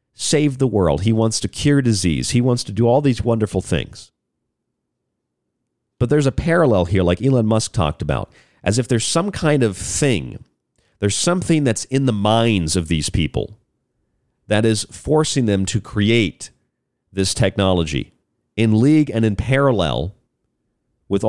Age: 40-59